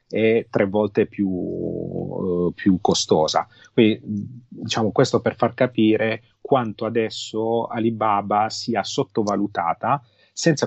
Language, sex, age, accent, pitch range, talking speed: Italian, male, 30-49, native, 100-120 Hz, 105 wpm